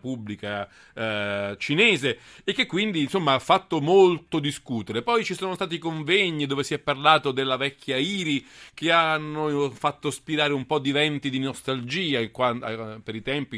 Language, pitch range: Italian, 120-170 Hz